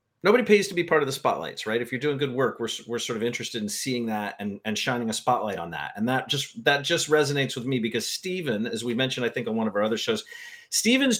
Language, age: English, 40-59